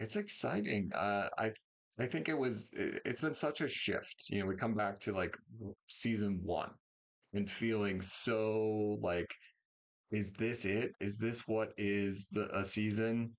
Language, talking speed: English, 160 wpm